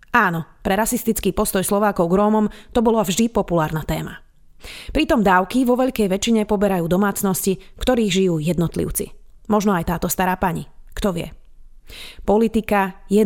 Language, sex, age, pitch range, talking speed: Slovak, female, 30-49, 175-225 Hz, 145 wpm